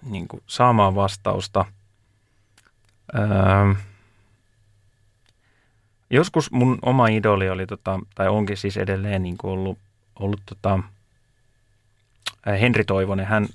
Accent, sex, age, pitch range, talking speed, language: native, male, 30-49, 95-110 Hz, 95 wpm, Finnish